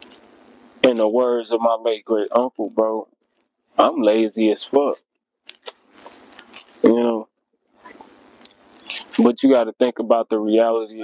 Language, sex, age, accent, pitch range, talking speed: English, male, 20-39, American, 110-130 Hz, 120 wpm